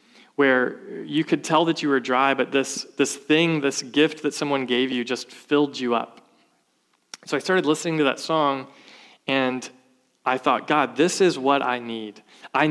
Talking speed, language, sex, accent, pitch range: 185 wpm, English, male, American, 135-165 Hz